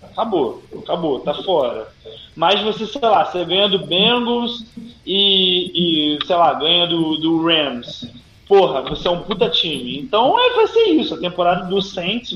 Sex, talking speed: male, 165 wpm